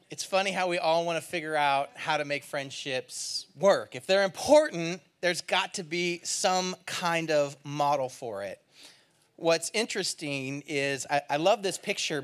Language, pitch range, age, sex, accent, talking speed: English, 145-195 Hz, 30-49, male, American, 170 wpm